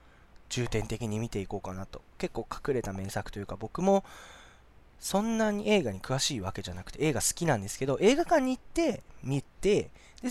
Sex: male